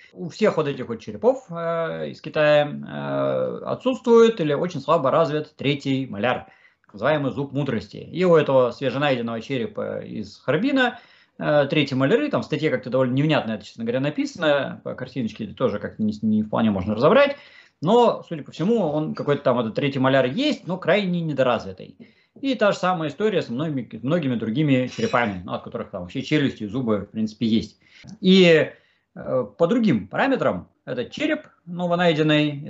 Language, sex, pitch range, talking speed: Russian, male, 125-210 Hz, 165 wpm